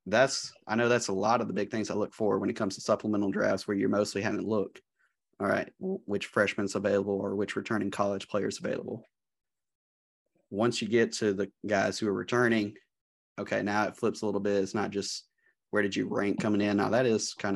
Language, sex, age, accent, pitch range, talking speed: English, male, 30-49, American, 95-105 Hz, 220 wpm